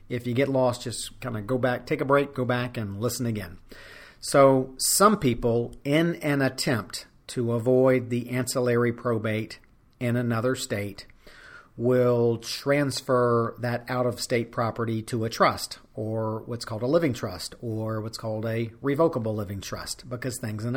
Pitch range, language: 110-130 Hz, English